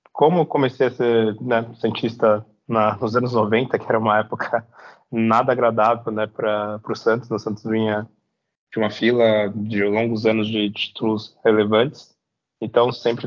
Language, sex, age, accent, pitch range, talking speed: Portuguese, male, 20-39, Brazilian, 110-120 Hz, 165 wpm